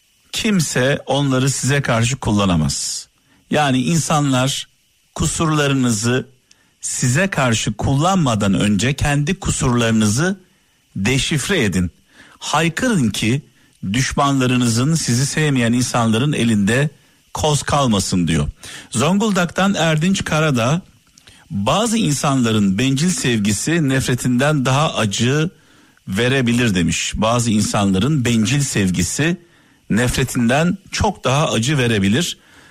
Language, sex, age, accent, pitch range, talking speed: Turkish, male, 50-69, native, 115-155 Hz, 85 wpm